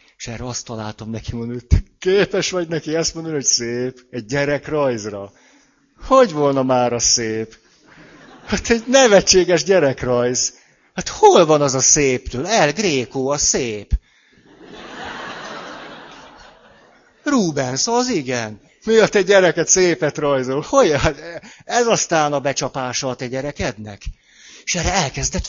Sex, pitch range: male, 125-195 Hz